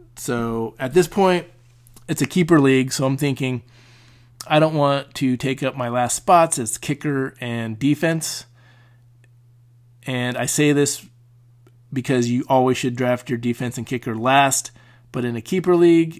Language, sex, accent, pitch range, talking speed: English, male, American, 120-140 Hz, 160 wpm